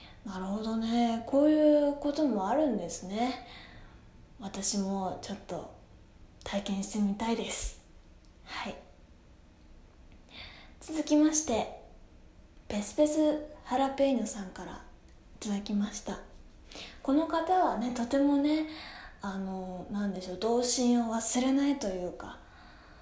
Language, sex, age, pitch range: Japanese, female, 20-39, 195-280 Hz